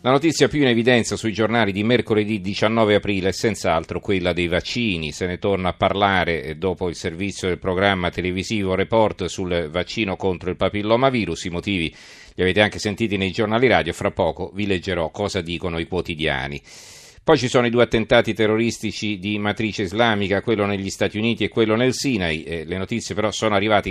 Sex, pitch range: male, 90-110 Hz